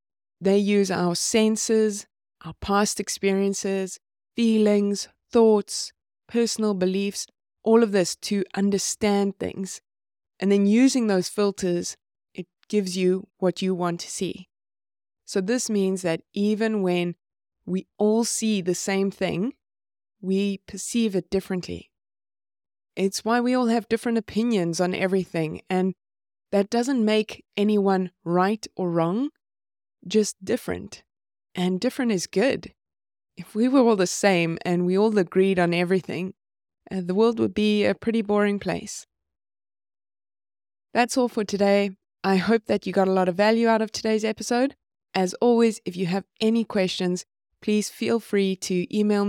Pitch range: 180-215 Hz